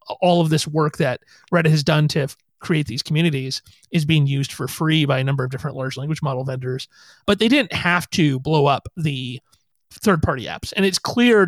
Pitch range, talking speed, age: 150-200 Hz, 205 wpm, 30-49